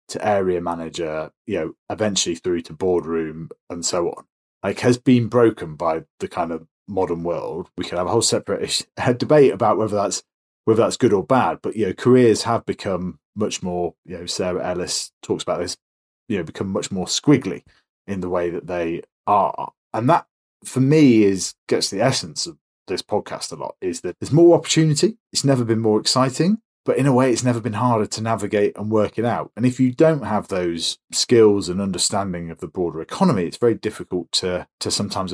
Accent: British